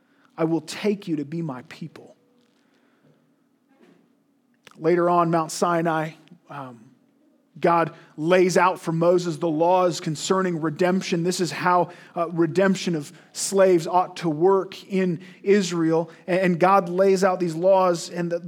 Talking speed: 135 wpm